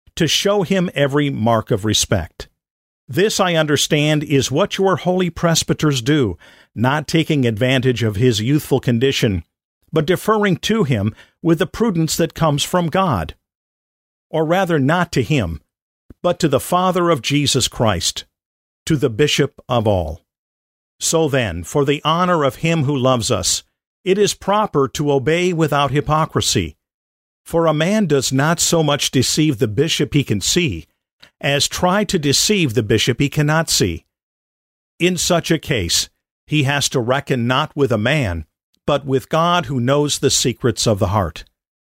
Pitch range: 120-165 Hz